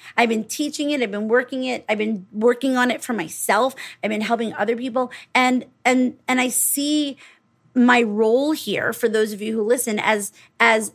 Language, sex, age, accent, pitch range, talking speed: English, female, 30-49, American, 225-280 Hz, 195 wpm